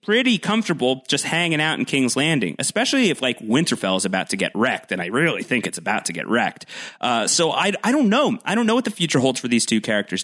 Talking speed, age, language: 250 wpm, 30-49, English